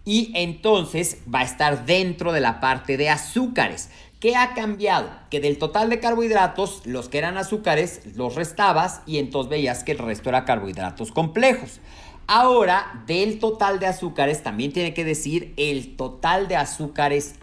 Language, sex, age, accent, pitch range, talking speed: Spanish, male, 40-59, Mexican, 135-195 Hz, 160 wpm